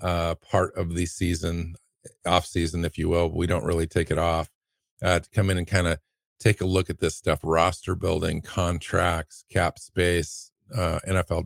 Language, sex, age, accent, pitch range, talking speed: English, male, 50-69, American, 85-95 Hz, 190 wpm